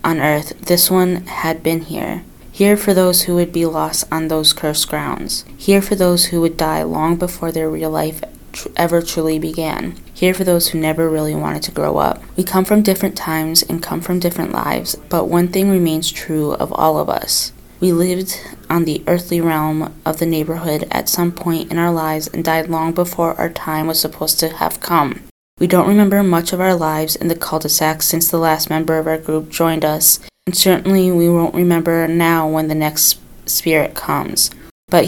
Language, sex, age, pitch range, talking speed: English, female, 20-39, 155-175 Hz, 200 wpm